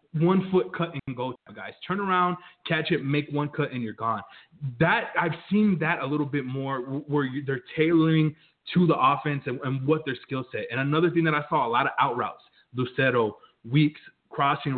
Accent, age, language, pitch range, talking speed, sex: American, 20-39, English, 130-165 Hz, 205 wpm, male